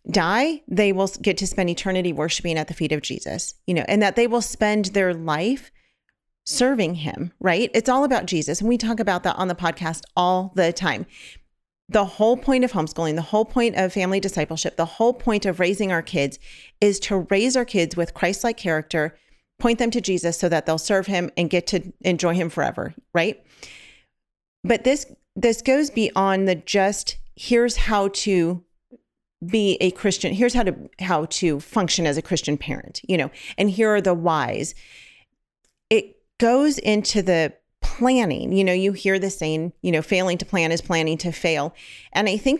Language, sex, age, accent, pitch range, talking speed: English, female, 40-59, American, 175-225 Hz, 190 wpm